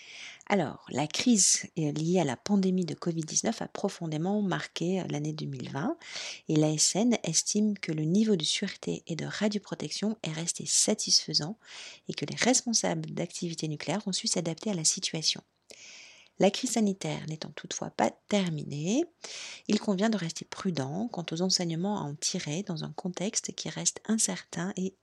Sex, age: female, 50-69